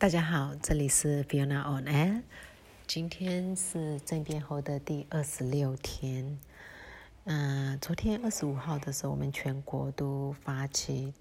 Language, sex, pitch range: Chinese, female, 140-160 Hz